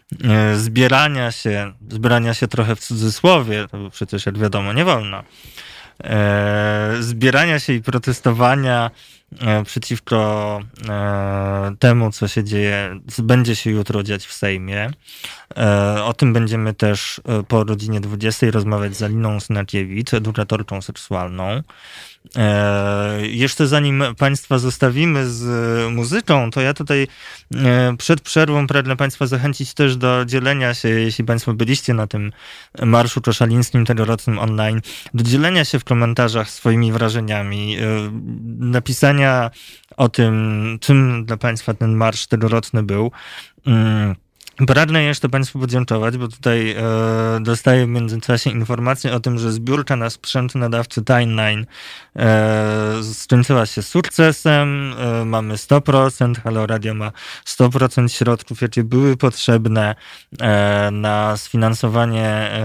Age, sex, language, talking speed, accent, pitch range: 20-39, male, Polish, 125 wpm, native, 110-130 Hz